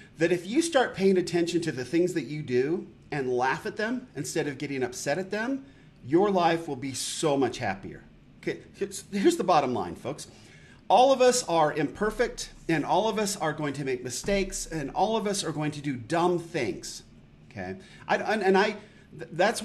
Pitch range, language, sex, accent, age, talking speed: 135-180 Hz, English, male, American, 40-59, 195 wpm